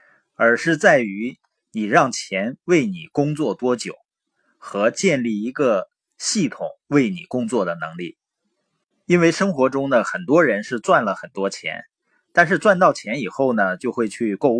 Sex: male